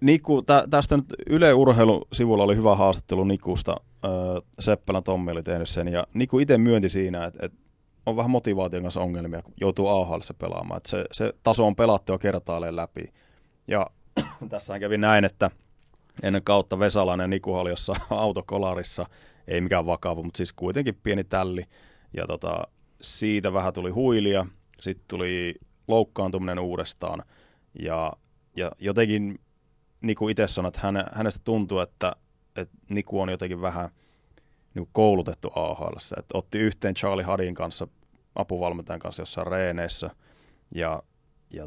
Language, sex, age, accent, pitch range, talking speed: Finnish, male, 30-49, native, 90-105 Hz, 145 wpm